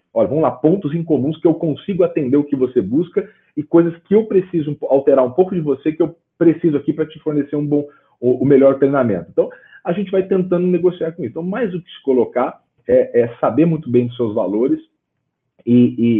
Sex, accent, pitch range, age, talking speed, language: male, Brazilian, 130-190 Hz, 40-59, 225 wpm, Portuguese